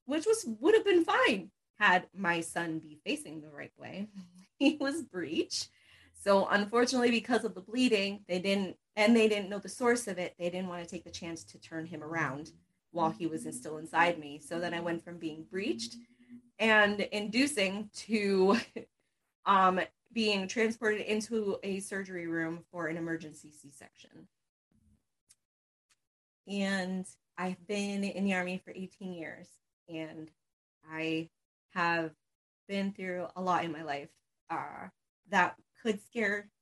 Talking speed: 155 wpm